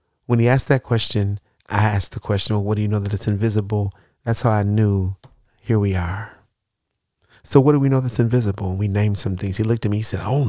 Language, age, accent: English, 40-59, American